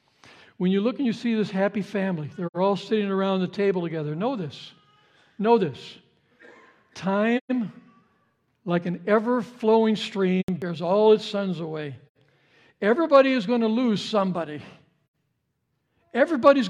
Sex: male